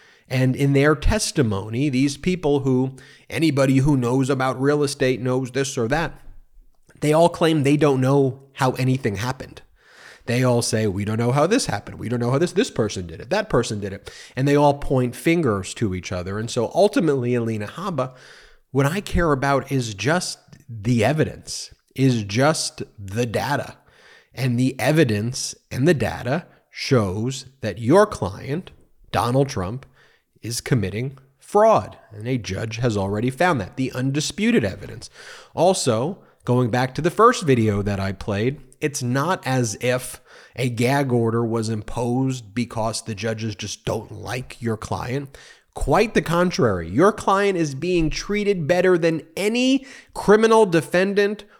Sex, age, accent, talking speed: male, 30-49, American, 160 wpm